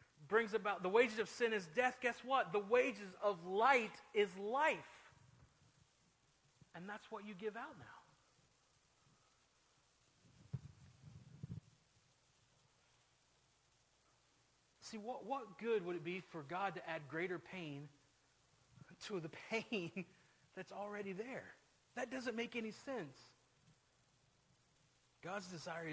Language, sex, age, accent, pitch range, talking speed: English, male, 40-59, American, 140-190 Hz, 115 wpm